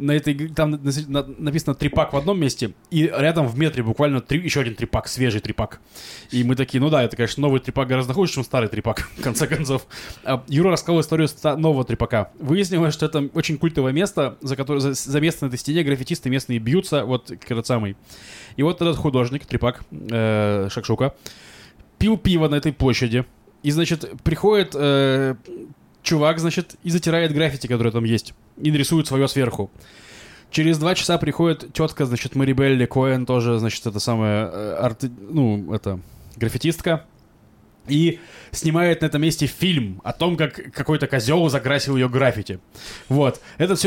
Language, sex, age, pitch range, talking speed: Russian, male, 20-39, 125-165 Hz, 165 wpm